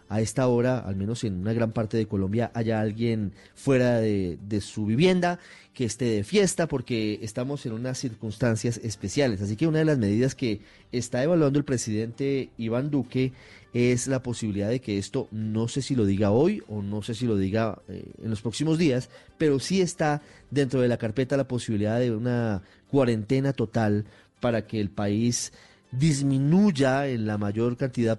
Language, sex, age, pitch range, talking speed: Spanish, male, 30-49, 110-135 Hz, 180 wpm